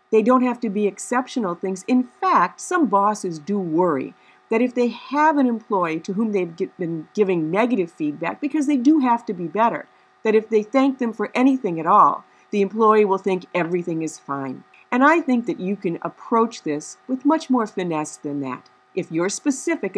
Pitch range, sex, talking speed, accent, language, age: 170-235 Hz, female, 200 wpm, American, English, 50-69